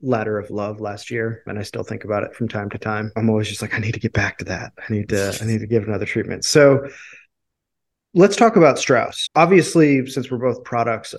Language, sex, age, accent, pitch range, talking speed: English, male, 30-49, American, 110-135 Hz, 240 wpm